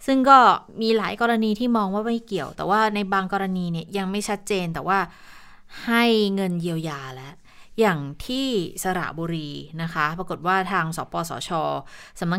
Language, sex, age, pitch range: Thai, female, 20-39, 170-210 Hz